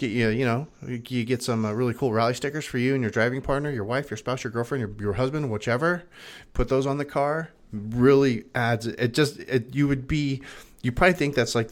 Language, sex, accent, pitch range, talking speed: English, male, American, 105-130 Hz, 220 wpm